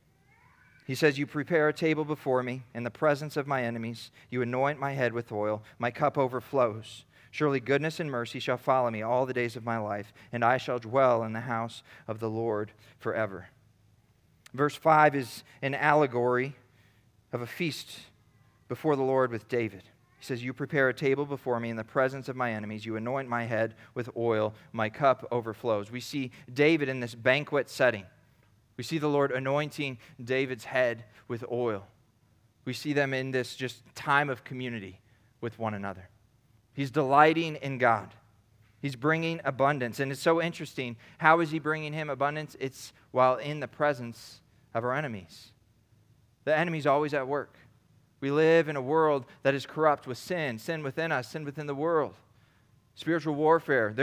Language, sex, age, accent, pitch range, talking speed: English, male, 40-59, American, 115-145 Hz, 180 wpm